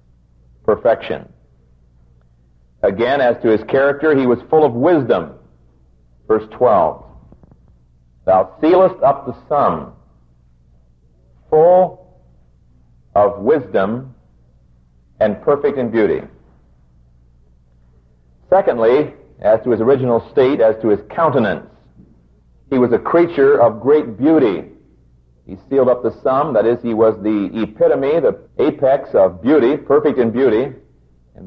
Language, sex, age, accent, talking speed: English, male, 50-69, American, 115 wpm